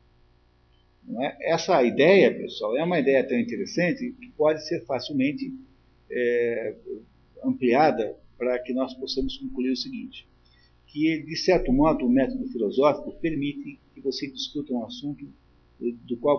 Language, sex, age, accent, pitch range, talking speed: Portuguese, male, 50-69, Brazilian, 120-195 Hz, 140 wpm